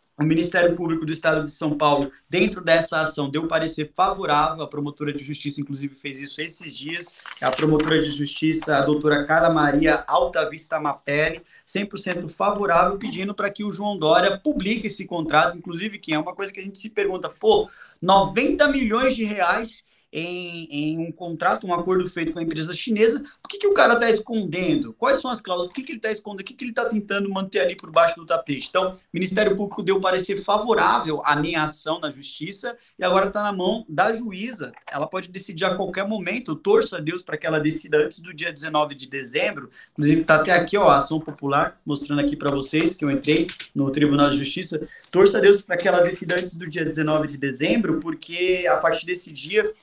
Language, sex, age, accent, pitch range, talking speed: Portuguese, male, 20-39, Brazilian, 155-200 Hz, 210 wpm